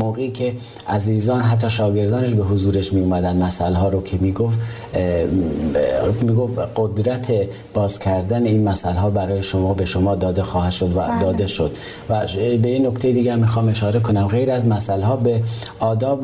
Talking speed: 165 wpm